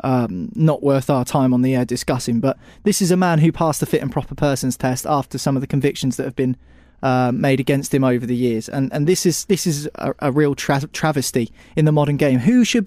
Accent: British